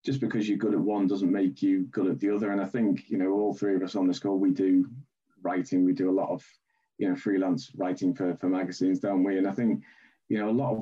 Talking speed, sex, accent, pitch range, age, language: 275 wpm, male, British, 90-110 Hz, 20-39, English